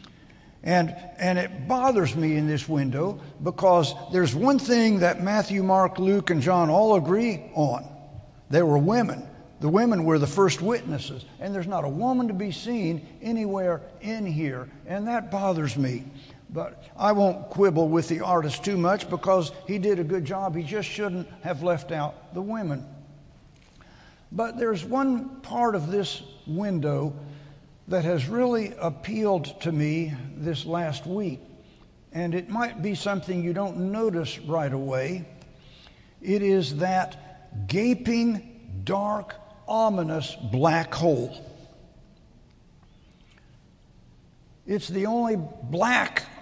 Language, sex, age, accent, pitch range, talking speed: English, male, 60-79, American, 150-205 Hz, 135 wpm